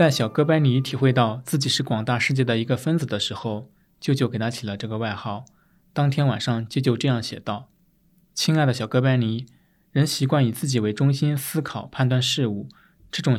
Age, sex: 20-39, male